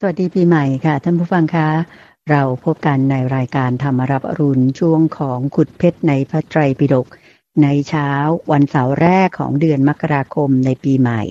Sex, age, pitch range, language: female, 60-79, 135-155 Hz, Thai